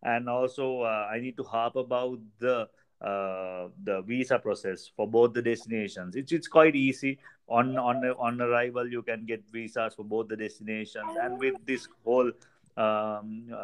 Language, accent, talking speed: English, Indian, 165 wpm